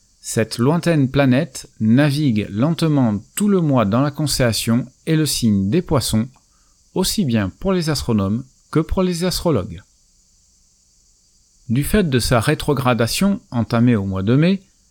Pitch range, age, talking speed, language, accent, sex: 110-170 Hz, 50-69, 140 wpm, French, French, male